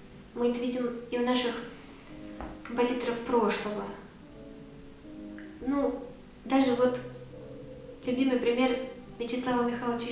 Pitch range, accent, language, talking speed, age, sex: 215-255 Hz, native, Russian, 90 wpm, 20-39, female